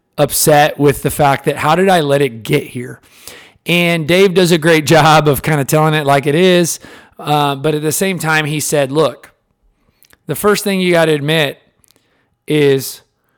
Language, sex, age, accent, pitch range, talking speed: English, male, 40-59, American, 140-175 Hz, 195 wpm